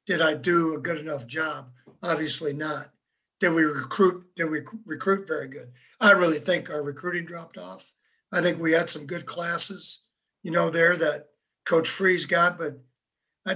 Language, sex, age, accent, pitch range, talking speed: English, male, 60-79, American, 165-200 Hz, 175 wpm